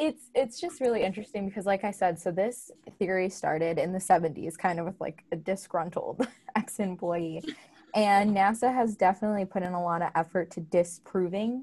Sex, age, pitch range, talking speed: female, 20-39, 175-220 Hz, 180 wpm